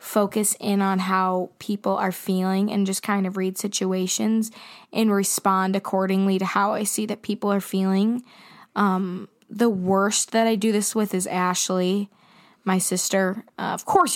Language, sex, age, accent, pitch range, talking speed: English, female, 20-39, American, 185-215 Hz, 165 wpm